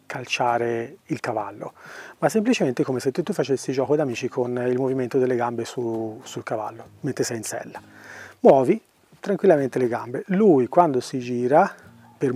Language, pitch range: Italian, 125-160 Hz